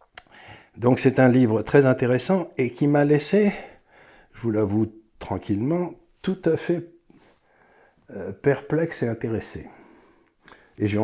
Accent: French